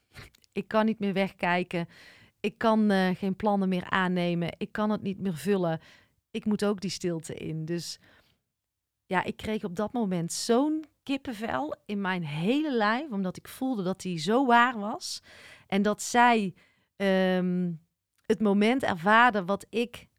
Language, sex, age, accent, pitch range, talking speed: Dutch, female, 40-59, Dutch, 170-220 Hz, 160 wpm